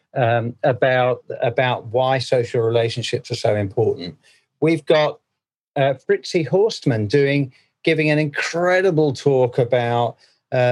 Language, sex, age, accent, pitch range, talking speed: English, male, 40-59, British, 120-150 Hz, 120 wpm